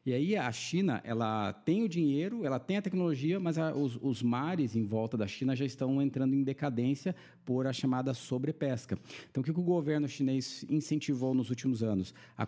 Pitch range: 115-150 Hz